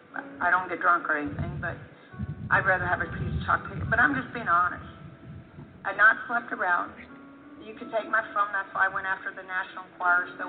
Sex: female